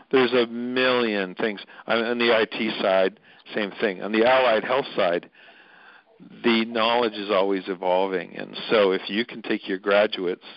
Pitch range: 95-115 Hz